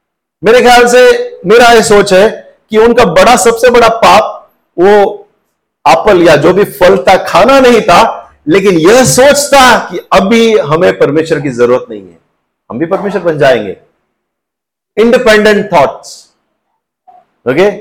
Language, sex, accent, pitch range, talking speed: Hindi, male, native, 170-245 Hz, 140 wpm